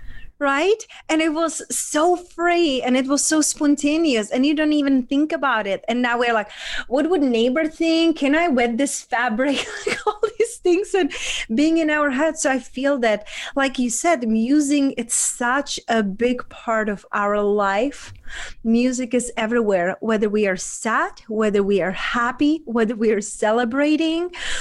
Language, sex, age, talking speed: English, female, 30-49, 170 wpm